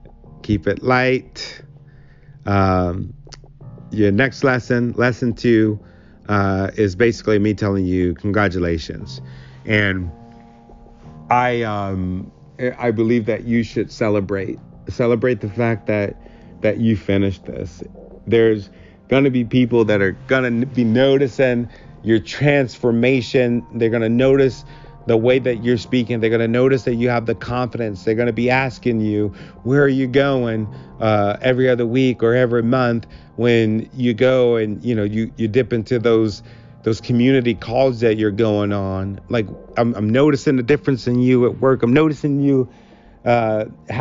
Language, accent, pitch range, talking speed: English, American, 110-135 Hz, 150 wpm